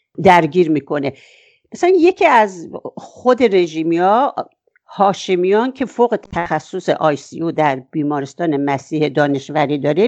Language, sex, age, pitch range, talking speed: English, female, 60-79, 170-255 Hz, 115 wpm